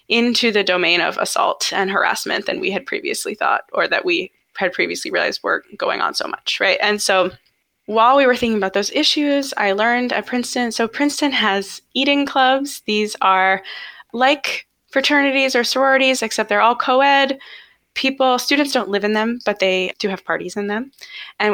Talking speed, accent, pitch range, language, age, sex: 185 wpm, American, 195-270 Hz, English, 10-29, female